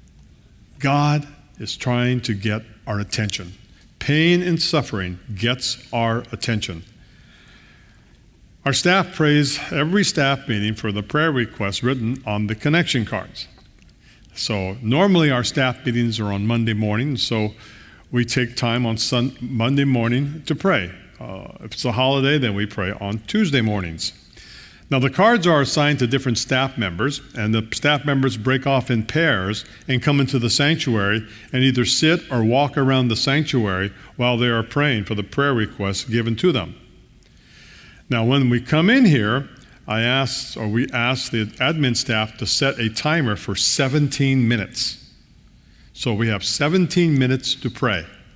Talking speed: 155 wpm